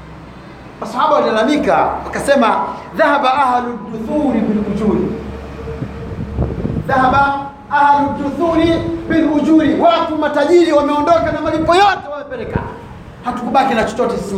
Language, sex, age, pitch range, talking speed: Swahili, male, 40-59, 200-300 Hz, 90 wpm